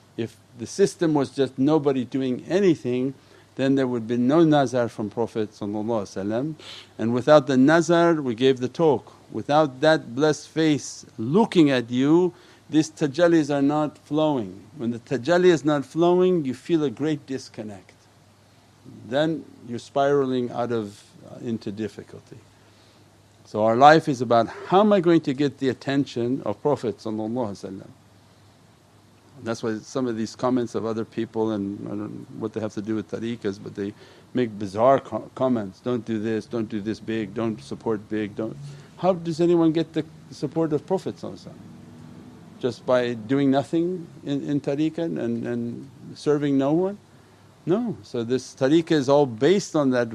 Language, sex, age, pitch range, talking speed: English, male, 50-69, 110-150 Hz, 160 wpm